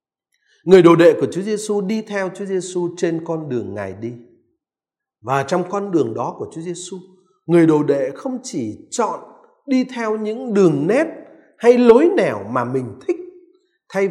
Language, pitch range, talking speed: Vietnamese, 160-245 Hz, 175 wpm